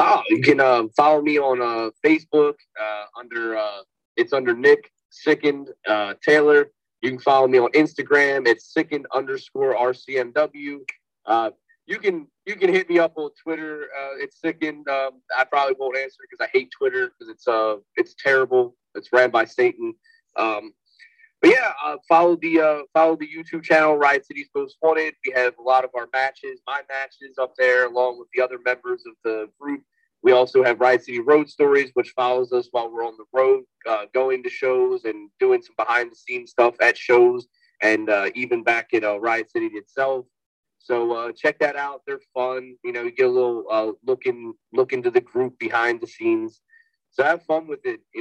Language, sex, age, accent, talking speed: English, male, 30-49, American, 195 wpm